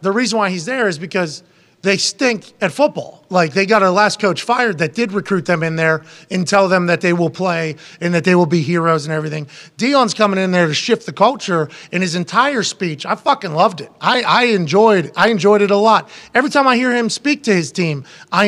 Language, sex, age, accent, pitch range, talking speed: English, male, 30-49, American, 175-220 Hz, 235 wpm